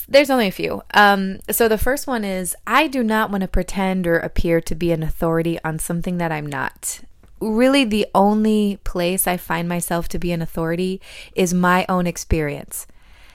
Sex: female